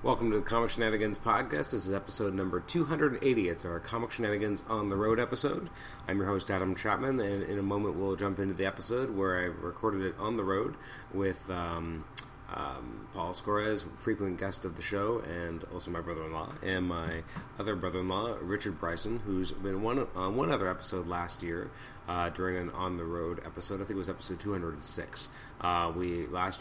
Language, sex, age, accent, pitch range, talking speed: English, male, 30-49, American, 85-100 Hz, 185 wpm